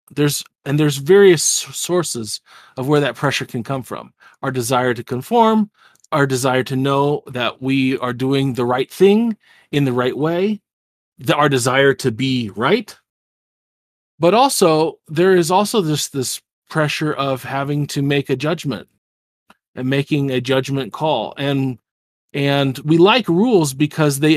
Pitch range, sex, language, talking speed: 125-155 Hz, male, English, 155 wpm